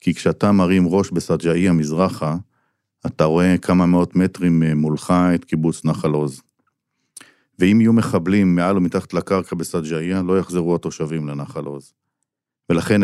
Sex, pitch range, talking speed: male, 85-100 Hz, 135 wpm